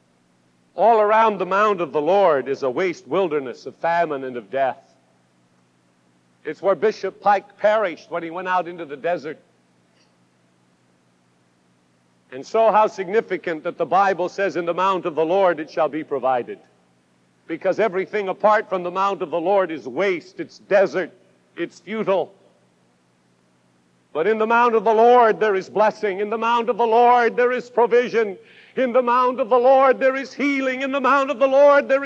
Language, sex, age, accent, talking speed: English, male, 60-79, American, 180 wpm